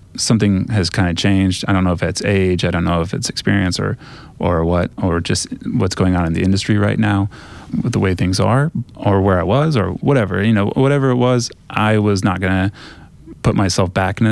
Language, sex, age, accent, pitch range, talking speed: English, male, 30-49, American, 95-115 Hz, 225 wpm